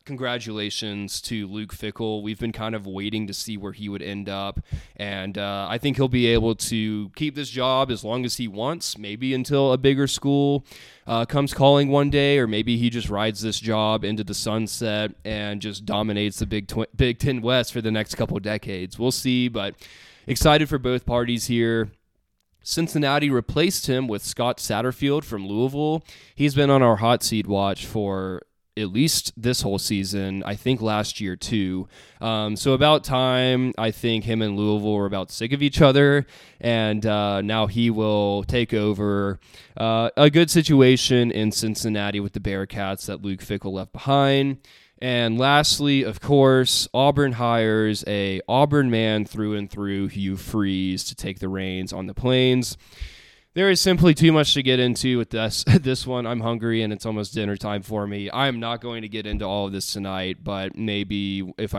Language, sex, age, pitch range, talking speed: English, male, 20-39, 100-130 Hz, 185 wpm